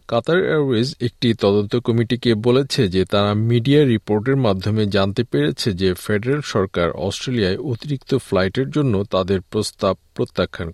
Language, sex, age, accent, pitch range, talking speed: Bengali, male, 50-69, native, 100-125 Hz, 110 wpm